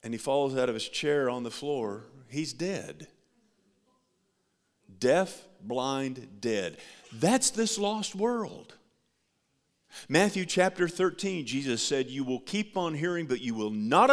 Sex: male